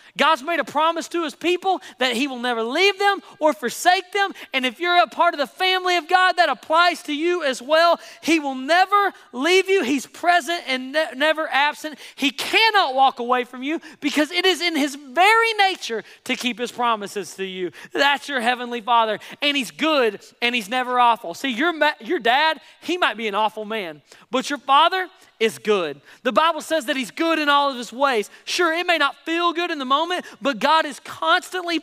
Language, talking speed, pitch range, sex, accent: English, 215 wpm, 250-340 Hz, male, American